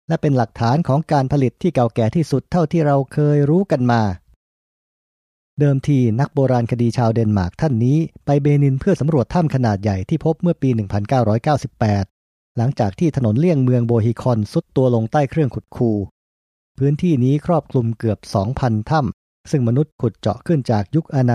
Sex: male